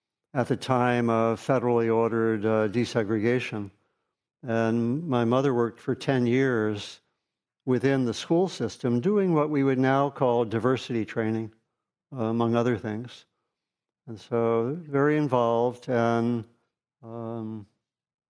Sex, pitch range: male, 115-130 Hz